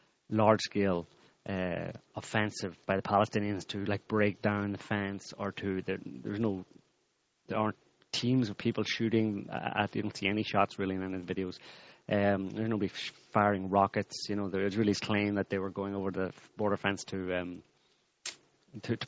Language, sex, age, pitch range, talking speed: English, male, 30-49, 95-110 Hz, 170 wpm